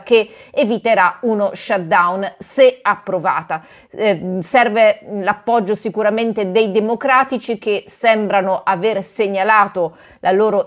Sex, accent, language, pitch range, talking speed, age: female, native, Italian, 190-225 Hz, 100 wpm, 30-49